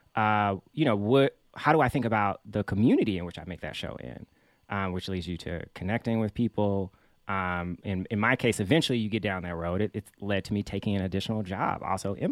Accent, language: American, English